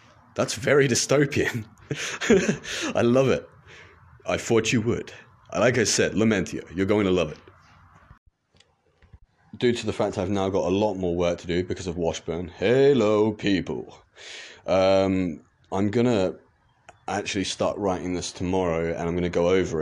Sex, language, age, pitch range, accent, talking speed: male, English, 30-49, 90-110 Hz, British, 150 wpm